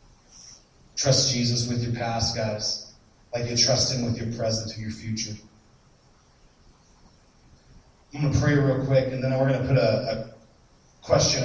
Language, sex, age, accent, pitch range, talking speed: English, male, 30-49, American, 120-145 Hz, 160 wpm